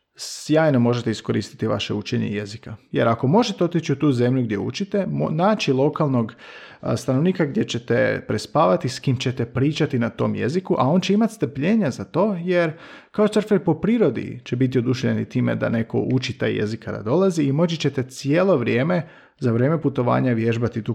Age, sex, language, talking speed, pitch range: 40-59, male, Croatian, 185 wpm, 120-175 Hz